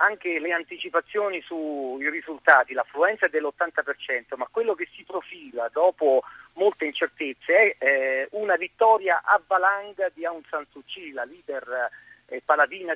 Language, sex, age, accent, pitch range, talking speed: Italian, male, 50-69, native, 145-215 Hz, 135 wpm